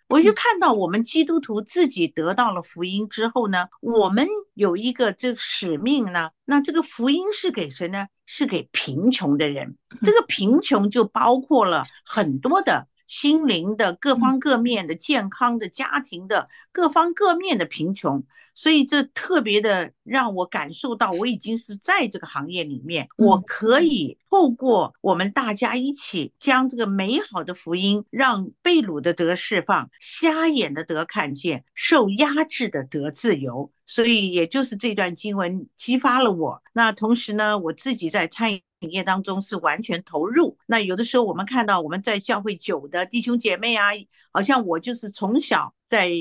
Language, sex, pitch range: Chinese, female, 185-280 Hz